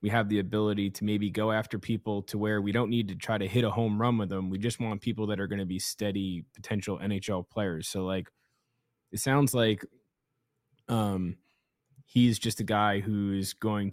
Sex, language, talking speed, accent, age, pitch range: male, English, 205 wpm, American, 20-39, 95-115 Hz